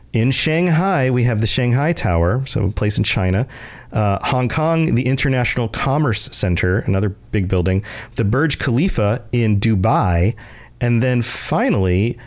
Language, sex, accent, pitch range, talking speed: English, male, American, 95-130 Hz, 145 wpm